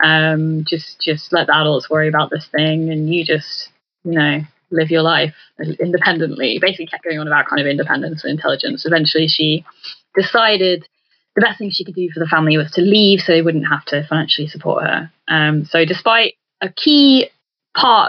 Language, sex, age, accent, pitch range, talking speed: English, female, 10-29, British, 155-185 Hz, 190 wpm